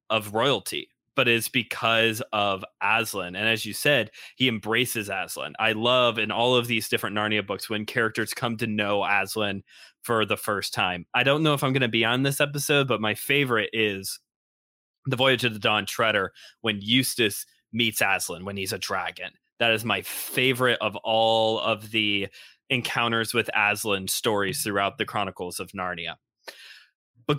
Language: English